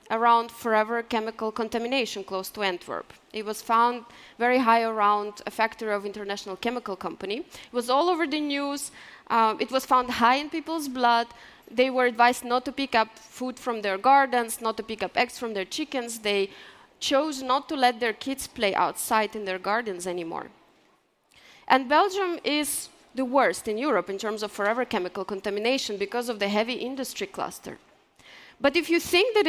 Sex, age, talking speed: female, 20-39, 180 wpm